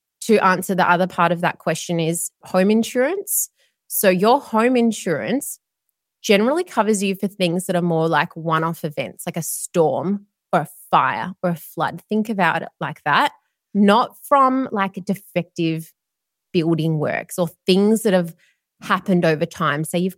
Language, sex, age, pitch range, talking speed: English, female, 20-39, 160-200 Hz, 165 wpm